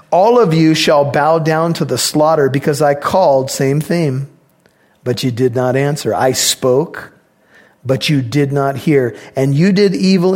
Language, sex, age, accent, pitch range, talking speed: English, male, 40-59, American, 140-185 Hz, 175 wpm